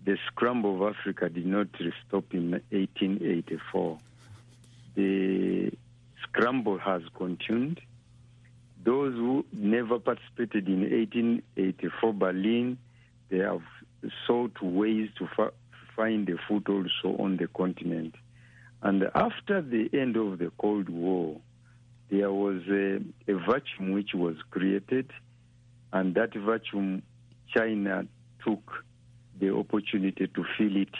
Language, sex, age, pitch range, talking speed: English, male, 60-79, 100-120 Hz, 115 wpm